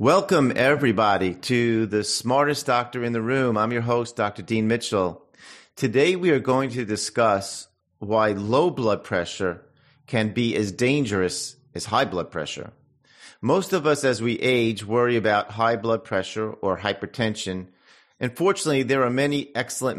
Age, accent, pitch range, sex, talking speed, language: 50-69, American, 100-130 Hz, male, 155 wpm, English